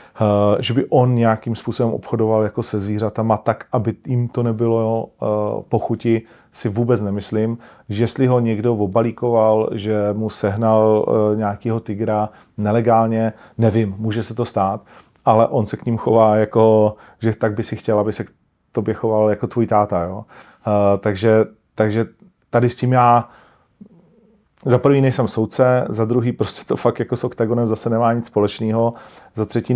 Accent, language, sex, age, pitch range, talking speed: native, Czech, male, 40-59, 105-120 Hz, 165 wpm